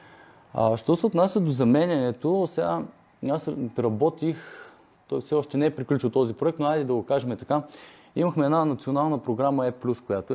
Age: 20-39